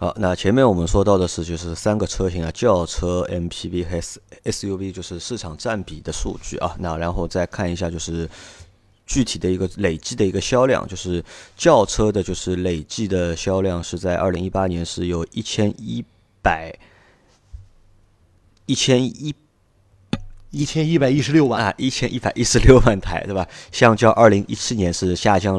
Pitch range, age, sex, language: 90-110 Hz, 30-49, male, Chinese